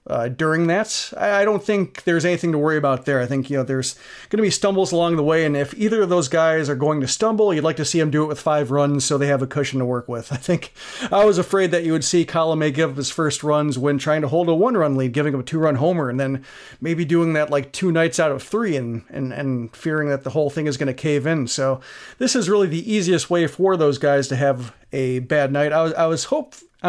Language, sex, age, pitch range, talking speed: English, male, 40-59, 140-170 Hz, 280 wpm